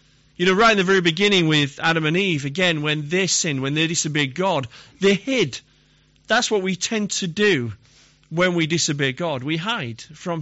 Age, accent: 40-59, British